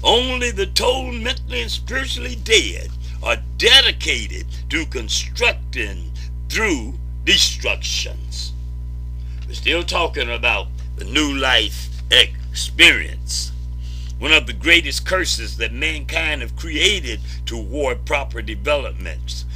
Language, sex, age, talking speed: English, male, 60-79, 100 wpm